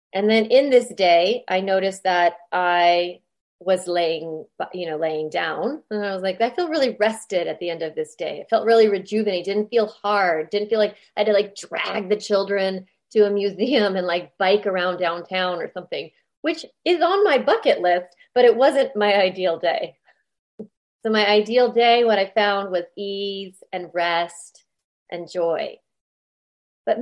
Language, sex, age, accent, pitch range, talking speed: English, female, 30-49, American, 180-235 Hz, 180 wpm